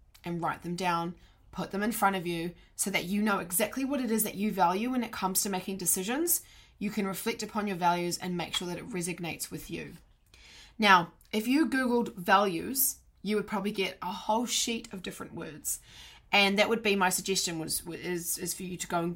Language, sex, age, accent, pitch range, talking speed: English, female, 20-39, Australian, 175-210 Hz, 220 wpm